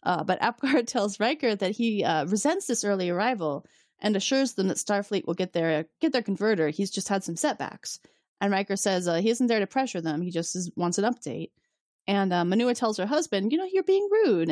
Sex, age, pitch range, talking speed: female, 30-49, 170-235 Hz, 225 wpm